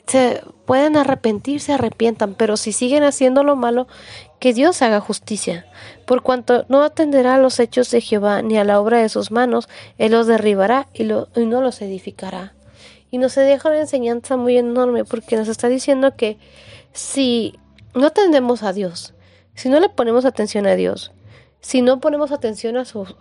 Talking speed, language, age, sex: 180 wpm, Spanish, 40-59, female